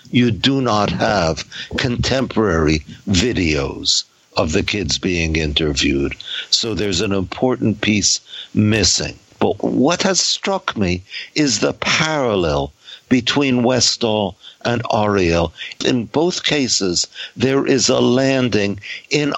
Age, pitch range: 60-79, 105-135 Hz